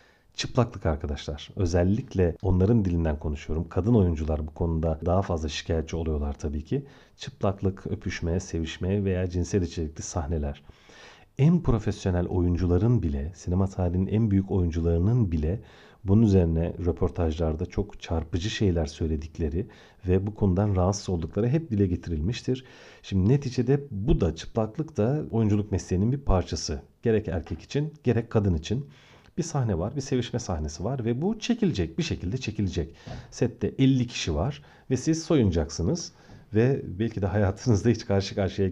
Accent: native